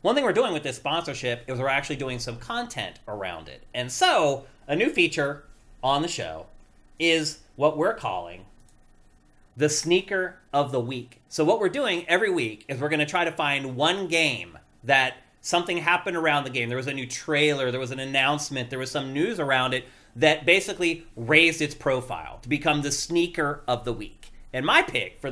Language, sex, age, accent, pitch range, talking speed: English, male, 30-49, American, 130-160 Hz, 200 wpm